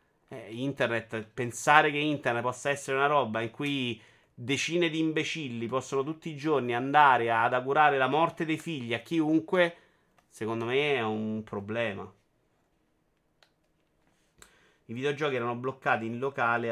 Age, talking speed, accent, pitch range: 30-49, 135 wpm, native, 110-145 Hz